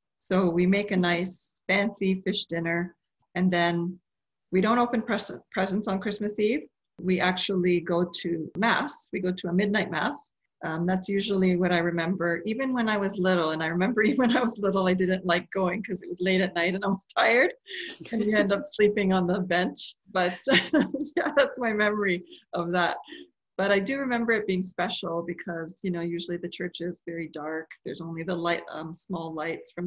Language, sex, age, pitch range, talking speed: English, female, 40-59, 175-210 Hz, 205 wpm